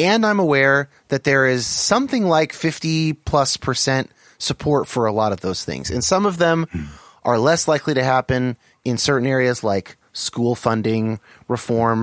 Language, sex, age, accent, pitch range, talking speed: English, male, 30-49, American, 110-155 Hz, 170 wpm